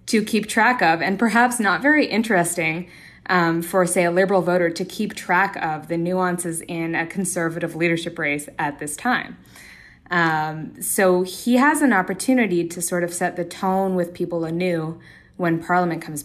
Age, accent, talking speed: 20-39, American, 175 wpm